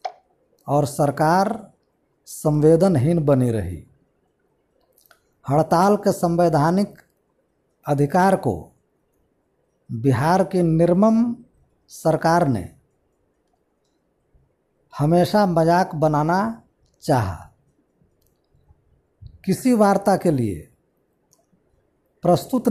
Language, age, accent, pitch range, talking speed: Hindi, 50-69, native, 145-205 Hz, 65 wpm